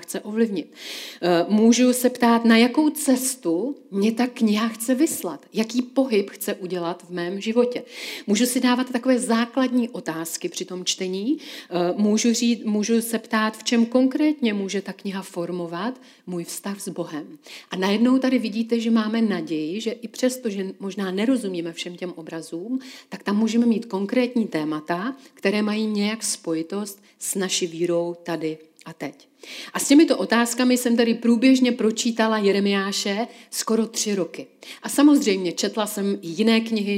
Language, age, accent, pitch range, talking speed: Czech, 40-59, native, 185-245 Hz, 155 wpm